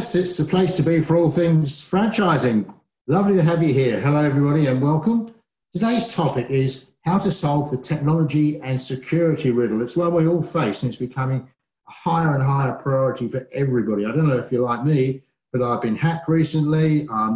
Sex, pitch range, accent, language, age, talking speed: male, 120-155 Hz, British, English, 50-69, 195 wpm